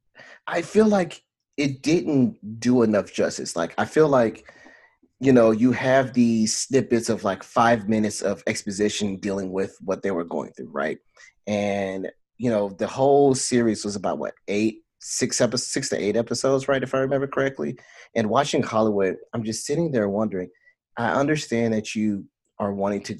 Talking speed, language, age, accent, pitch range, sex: 175 wpm, English, 30-49, American, 100-125 Hz, male